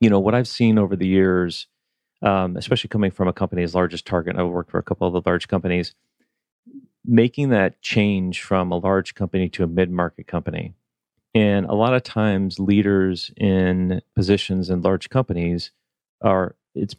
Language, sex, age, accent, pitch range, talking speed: English, male, 40-59, American, 90-105 Hz, 175 wpm